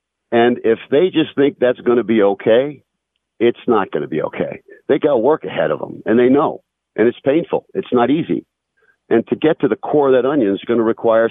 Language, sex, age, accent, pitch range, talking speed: English, male, 50-69, American, 95-150 Hz, 235 wpm